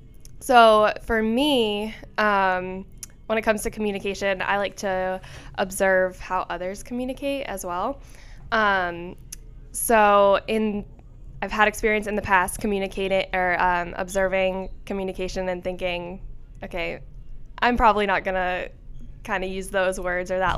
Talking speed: 135 wpm